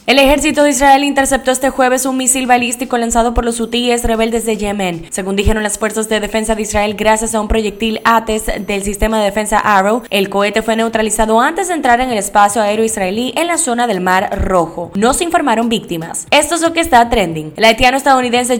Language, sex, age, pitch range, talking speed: Spanish, female, 10-29, 205-245 Hz, 215 wpm